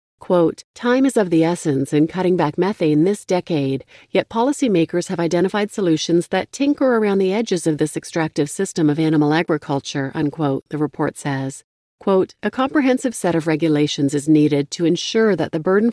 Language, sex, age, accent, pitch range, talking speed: English, female, 40-59, American, 160-210 Hz, 175 wpm